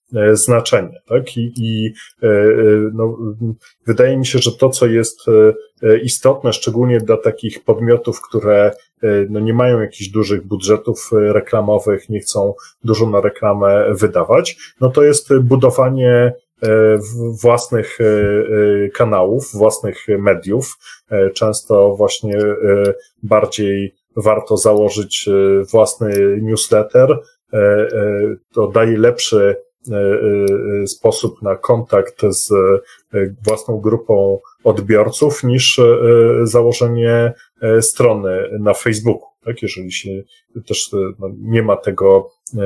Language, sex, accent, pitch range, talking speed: Polish, male, native, 105-125 Hz, 95 wpm